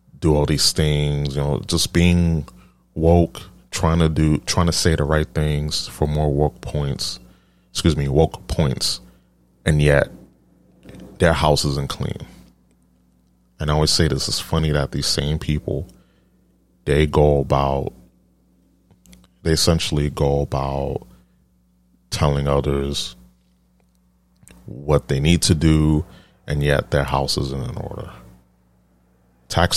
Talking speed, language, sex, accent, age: 130 wpm, English, male, American, 30-49